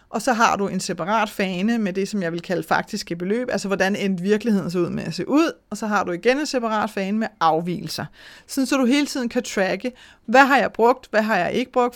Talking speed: 250 wpm